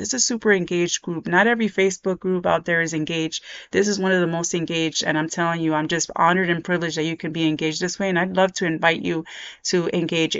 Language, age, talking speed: English, 30-49, 260 wpm